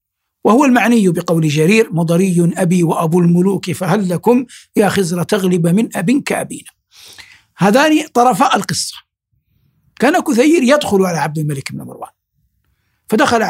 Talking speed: 125 wpm